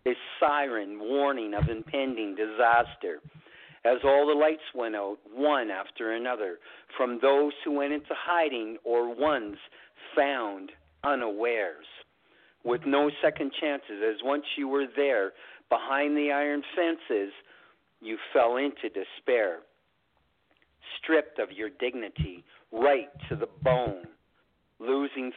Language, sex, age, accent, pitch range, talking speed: English, male, 50-69, American, 115-150 Hz, 120 wpm